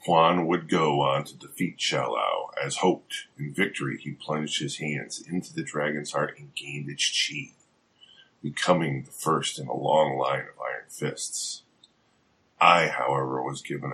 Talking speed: 160 wpm